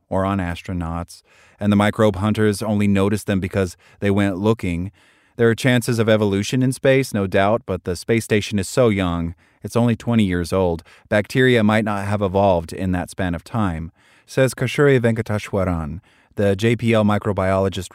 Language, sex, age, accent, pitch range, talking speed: English, male, 30-49, American, 95-120 Hz, 170 wpm